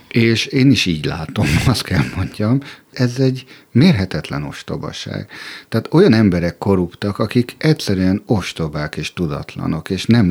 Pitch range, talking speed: 90-130 Hz, 135 wpm